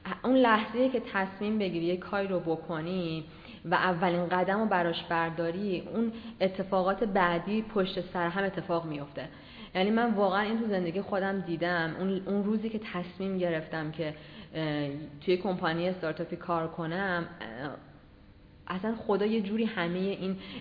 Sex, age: female, 20-39